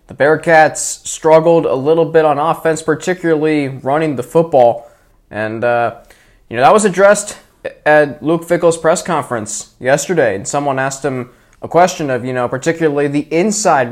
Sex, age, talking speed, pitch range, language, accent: male, 20-39, 160 wpm, 130-165 Hz, English, American